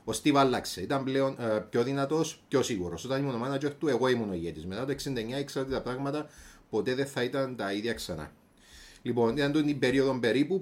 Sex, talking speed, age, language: male, 210 wpm, 30-49, Greek